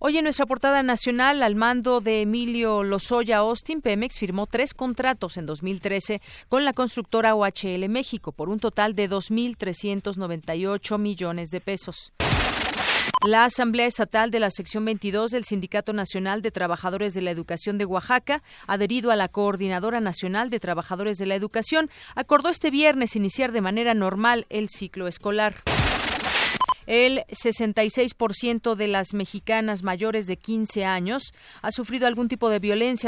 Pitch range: 195-240 Hz